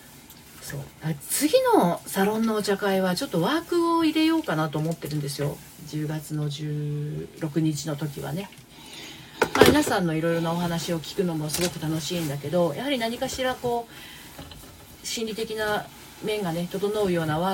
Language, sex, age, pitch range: Japanese, female, 40-59, 150-195 Hz